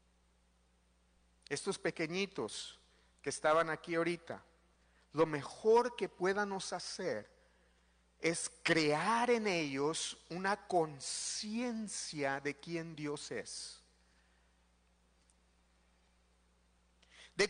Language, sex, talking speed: English, male, 75 wpm